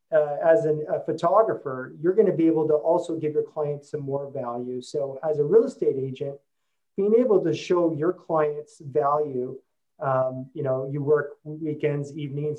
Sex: male